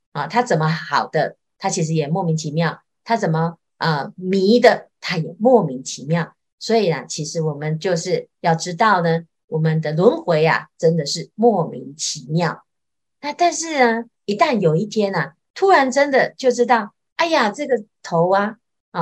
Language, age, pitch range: Chinese, 30-49, 160-230 Hz